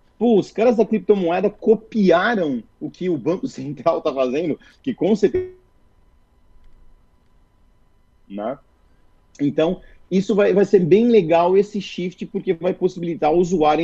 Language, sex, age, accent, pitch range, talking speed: Portuguese, male, 30-49, Brazilian, 135-215 Hz, 135 wpm